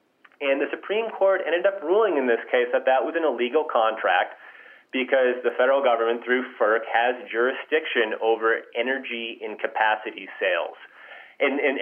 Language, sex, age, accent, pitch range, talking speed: English, male, 30-49, American, 120-190 Hz, 150 wpm